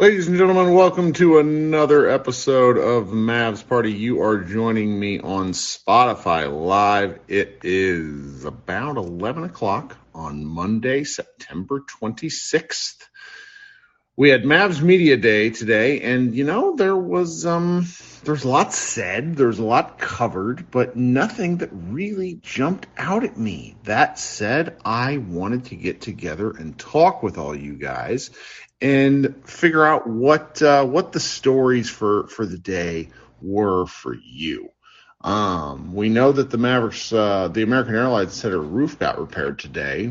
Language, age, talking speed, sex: English, 50-69, 145 wpm, male